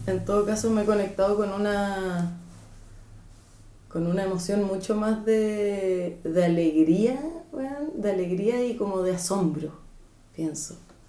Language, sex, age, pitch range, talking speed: Spanish, female, 20-39, 185-235 Hz, 130 wpm